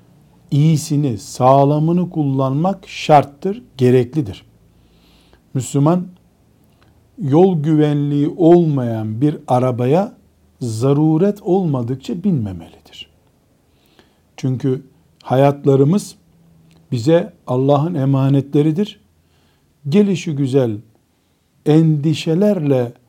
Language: Turkish